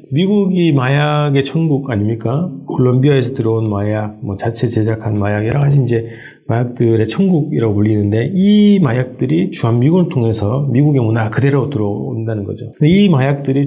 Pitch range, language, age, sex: 105-145 Hz, Korean, 40-59, male